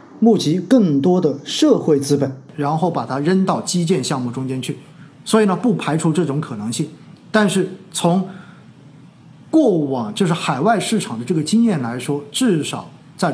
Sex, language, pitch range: male, Chinese, 150-210 Hz